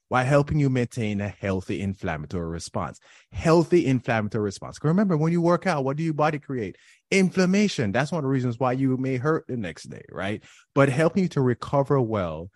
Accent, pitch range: American, 95-140 Hz